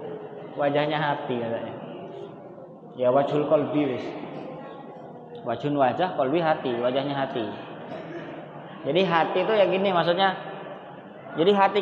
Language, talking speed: Indonesian, 95 wpm